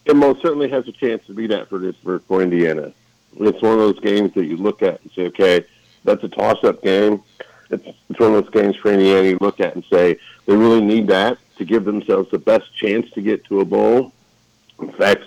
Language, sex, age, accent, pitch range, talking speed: English, male, 50-69, American, 95-115 Hz, 230 wpm